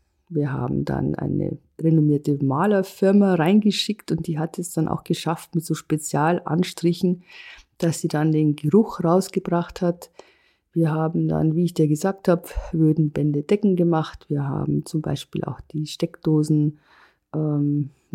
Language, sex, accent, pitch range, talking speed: German, female, German, 155-185 Hz, 140 wpm